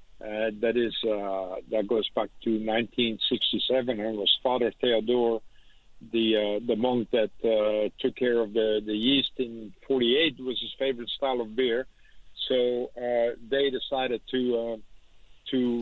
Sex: male